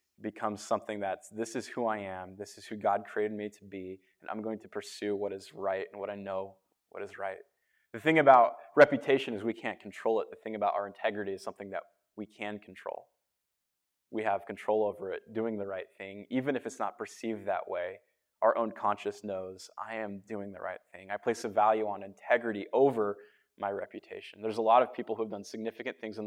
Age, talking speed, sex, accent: 20-39, 220 wpm, male, American